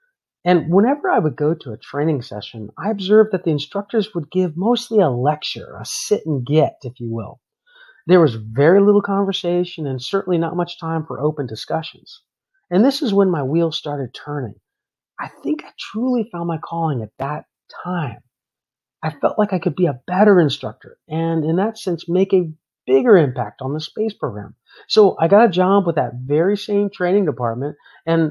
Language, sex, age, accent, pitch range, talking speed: English, male, 40-59, American, 145-205 Hz, 190 wpm